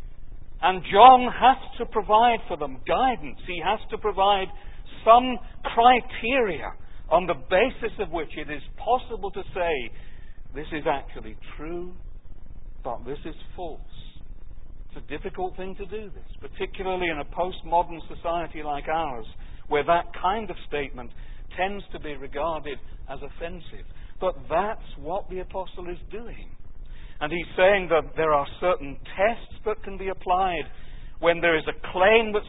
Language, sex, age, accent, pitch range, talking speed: English, male, 60-79, British, 120-200 Hz, 150 wpm